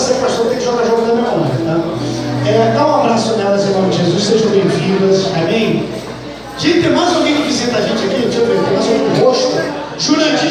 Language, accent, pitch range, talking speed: Portuguese, Brazilian, 230-300 Hz, 215 wpm